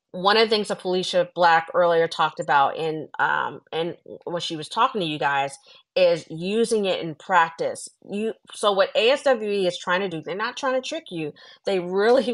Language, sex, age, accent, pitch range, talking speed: English, female, 40-59, American, 170-225 Hz, 200 wpm